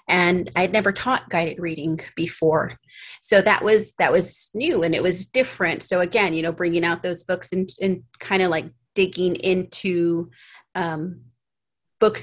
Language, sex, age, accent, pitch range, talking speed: English, female, 30-49, American, 170-200 Hz, 170 wpm